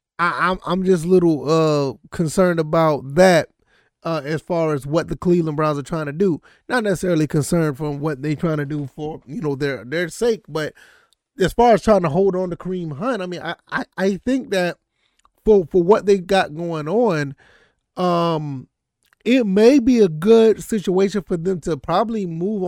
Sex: male